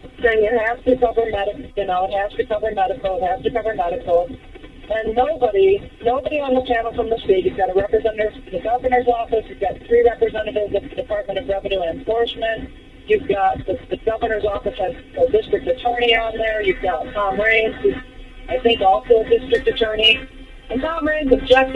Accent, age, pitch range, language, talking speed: American, 40-59, 210-280 Hz, English, 200 wpm